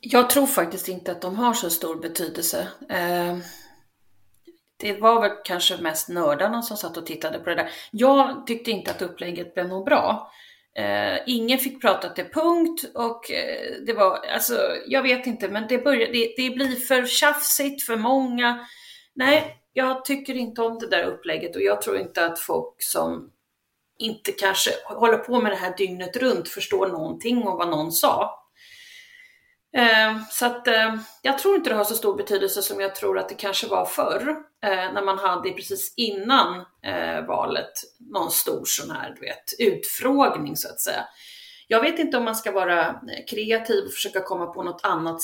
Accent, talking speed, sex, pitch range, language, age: native, 180 wpm, female, 190-270 Hz, Swedish, 30-49